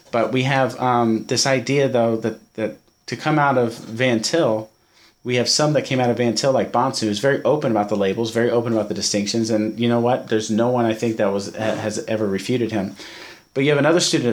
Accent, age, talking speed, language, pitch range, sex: American, 30-49, 240 wpm, English, 110-135 Hz, male